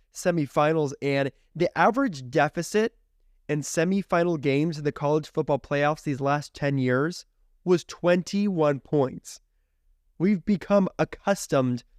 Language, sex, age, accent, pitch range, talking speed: English, male, 20-39, American, 135-175 Hz, 115 wpm